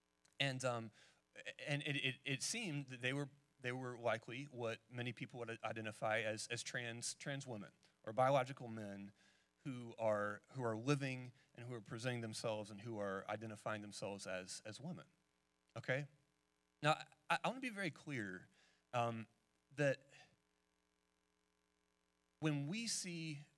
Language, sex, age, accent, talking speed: English, male, 30-49, American, 150 wpm